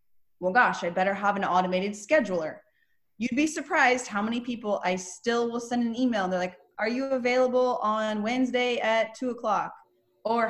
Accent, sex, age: American, female, 20-39